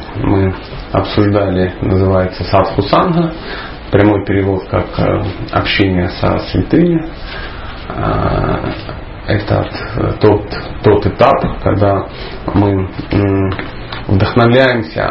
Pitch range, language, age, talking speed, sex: 100-120 Hz, Russian, 30-49, 70 wpm, male